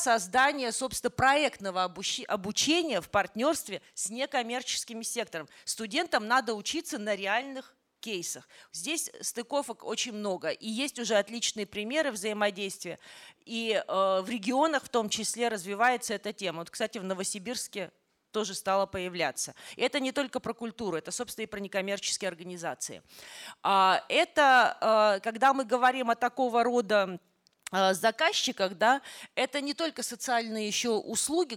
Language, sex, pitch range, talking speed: Russian, female, 205-255 Hz, 125 wpm